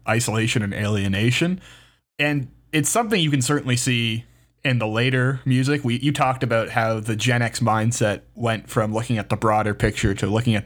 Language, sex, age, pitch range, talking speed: English, male, 20-39, 110-125 Hz, 185 wpm